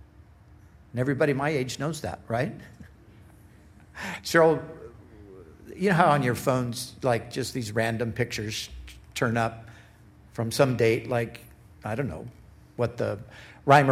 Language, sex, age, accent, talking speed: English, male, 60-79, American, 135 wpm